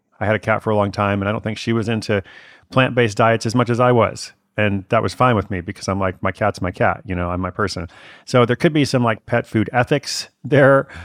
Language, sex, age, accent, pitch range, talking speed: English, male, 30-49, American, 95-115 Hz, 275 wpm